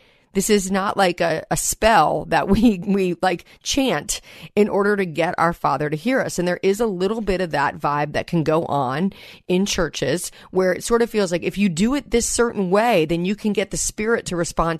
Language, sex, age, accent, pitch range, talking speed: English, female, 40-59, American, 175-220 Hz, 230 wpm